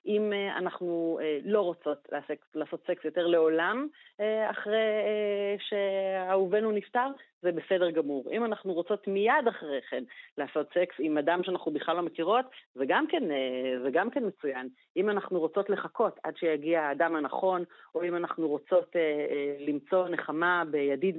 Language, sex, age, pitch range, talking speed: Hebrew, female, 30-49, 155-200 Hz, 135 wpm